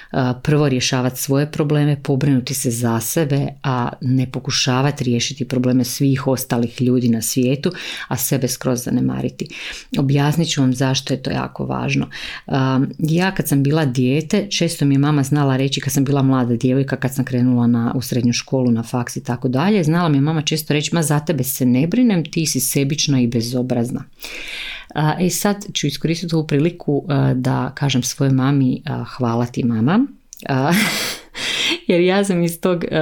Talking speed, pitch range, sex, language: 175 wpm, 130-160 Hz, female, Croatian